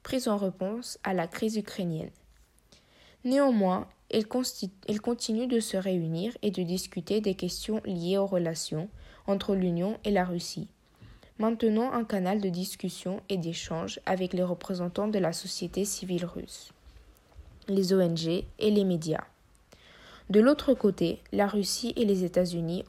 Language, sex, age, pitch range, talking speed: French, female, 20-39, 180-215 Hz, 145 wpm